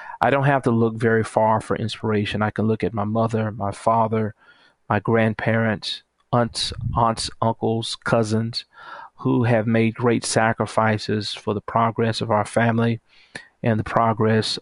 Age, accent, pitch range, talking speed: 40-59, American, 110-120 Hz, 150 wpm